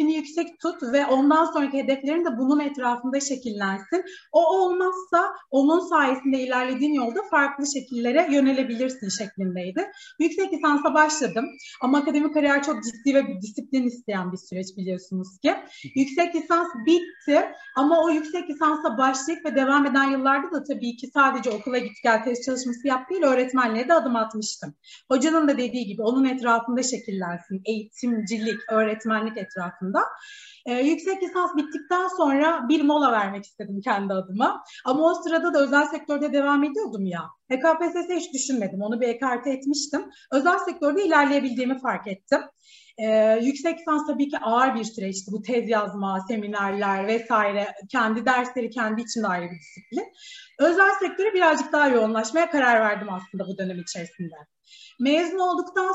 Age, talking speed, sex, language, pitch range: 30-49, 145 wpm, female, Turkish, 220-310 Hz